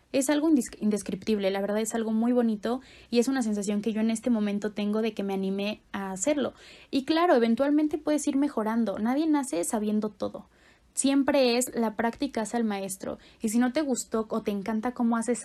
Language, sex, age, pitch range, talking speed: Spanish, female, 20-39, 215-265 Hz, 200 wpm